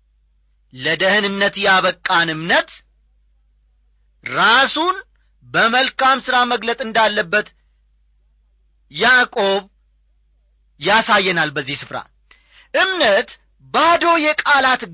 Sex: male